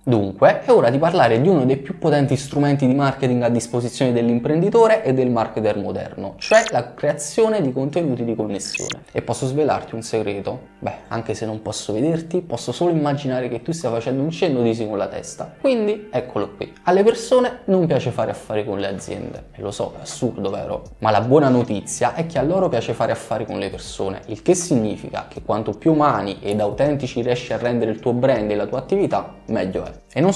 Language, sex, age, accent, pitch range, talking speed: Italian, male, 20-39, native, 115-155 Hz, 210 wpm